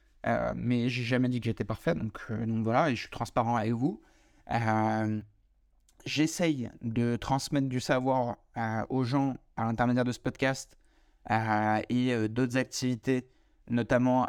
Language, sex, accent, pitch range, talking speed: French, male, French, 115-135 Hz, 155 wpm